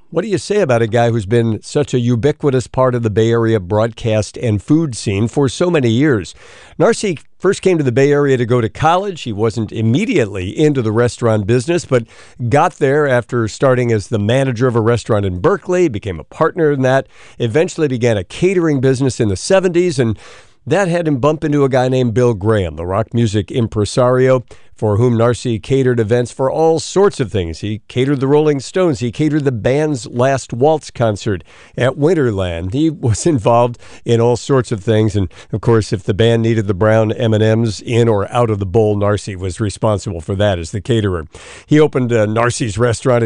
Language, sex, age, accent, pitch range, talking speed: English, male, 50-69, American, 110-140 Hz, 200 wpm